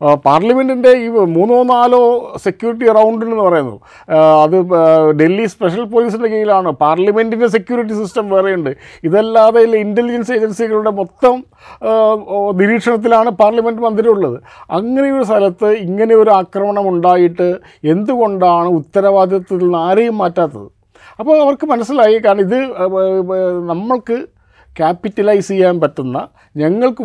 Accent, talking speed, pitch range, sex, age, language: native, 100 wpm, 175-225 Hz, male, 50-69, Malayalam